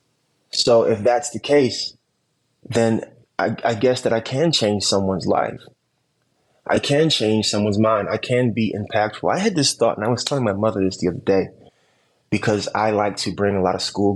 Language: English